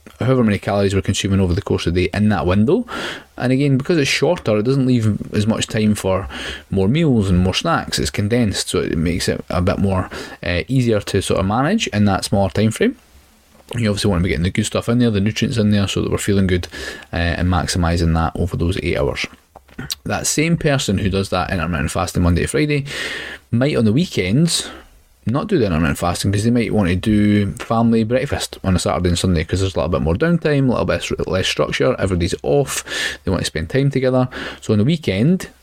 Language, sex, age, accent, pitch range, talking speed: English, male, 20-39, British, 90-120 Hz, 230 wpm